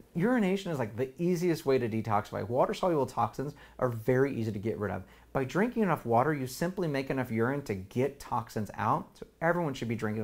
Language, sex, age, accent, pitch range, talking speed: English, male, 30-49, American, 105-150 Hz, 205 wpm